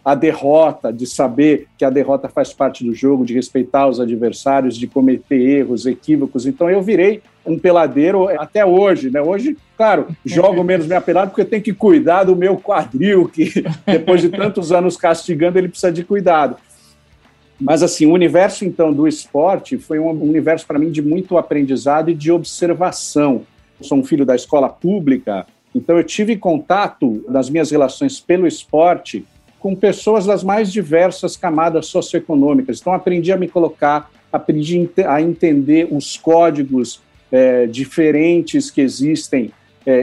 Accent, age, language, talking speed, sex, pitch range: Brazilian, 50-69, Portuguese, 160 wpm, male, 140-190 Hz